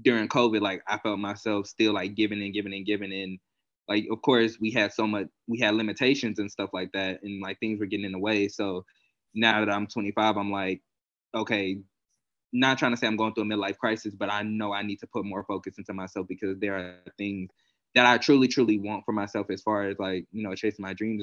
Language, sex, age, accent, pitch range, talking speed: English, male, 20-39, American, 100-110 Hz, 240 wpm